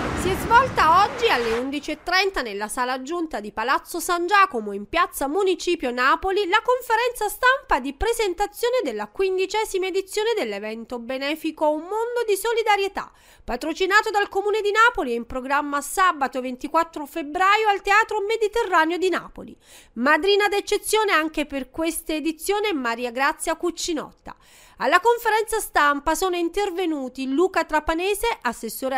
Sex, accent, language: female, native, Italian